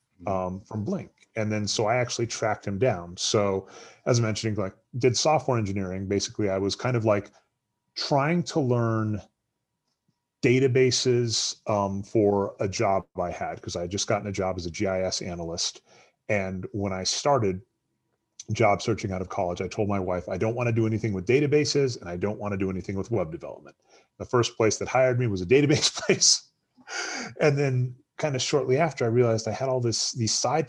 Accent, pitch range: American, 95-120 Hz